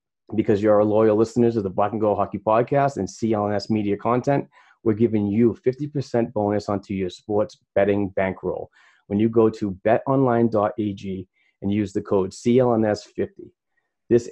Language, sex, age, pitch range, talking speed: English, male, 30-49, 100-120 Hz, 160 wpm